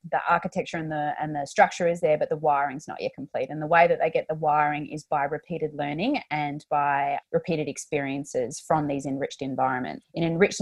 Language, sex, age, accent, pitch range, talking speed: English, female, 20-39, Australian, 150-170 Hz, 210 wpm